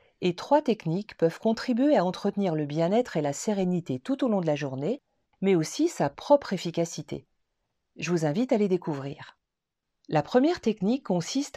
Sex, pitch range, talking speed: female, 160-235 Hz, 170 wpm